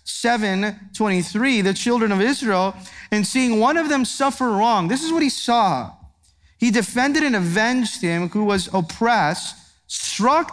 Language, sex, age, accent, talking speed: English, male, 30-49, American, 150 wpm